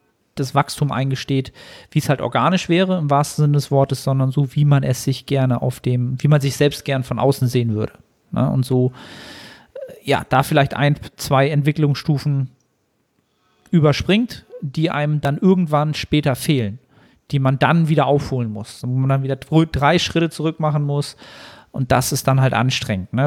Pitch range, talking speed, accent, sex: 130-160 Hz, 175 wpm, German, male